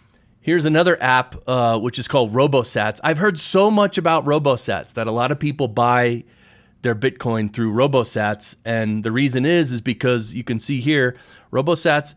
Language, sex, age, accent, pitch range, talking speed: English, male, 30-49, American, 115-140 Hz, 175 wpm